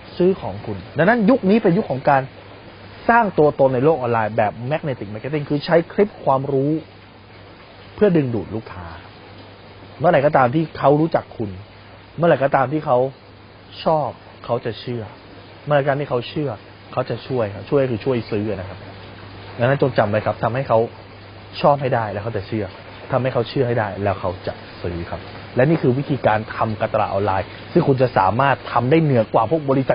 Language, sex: Thai, male